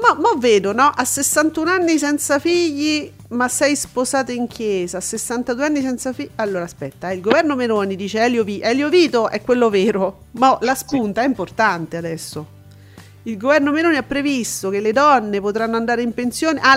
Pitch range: 220-290 Hz